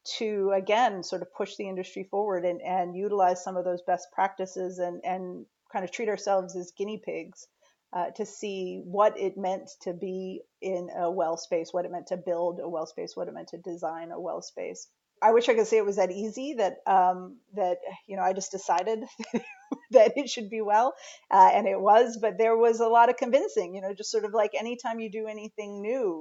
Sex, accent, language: female, American, English